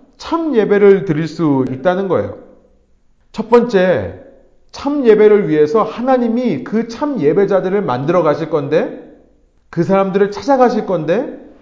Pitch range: 135-200 Hz